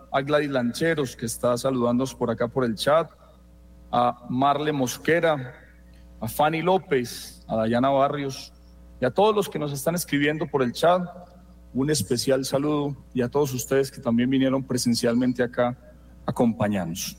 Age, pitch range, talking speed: 40-59, 100-135 Hz, 155 wpm